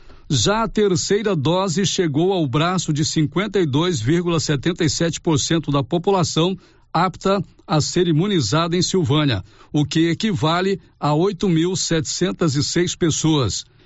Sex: male